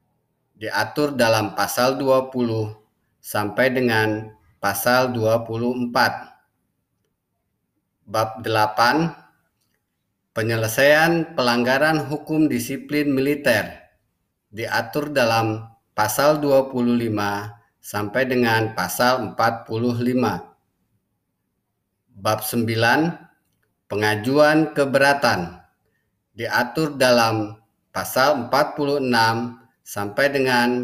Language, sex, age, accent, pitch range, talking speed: Indonesian, male, 20-39, native, 110-135 Hz, 65 wpm